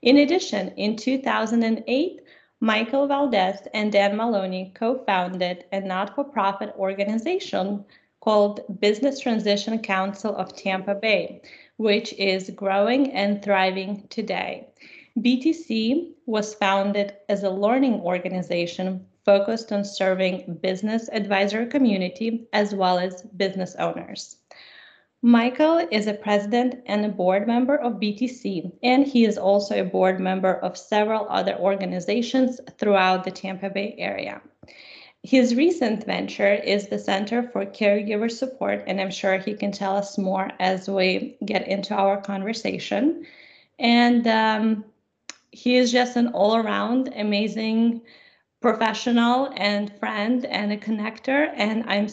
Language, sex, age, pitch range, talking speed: English, female, 20-39, 195-240 Hz, 130 wpm